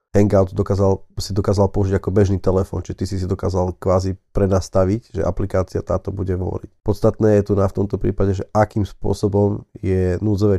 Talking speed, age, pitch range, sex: 180 wpm, 30-49, 95-110 Hz, male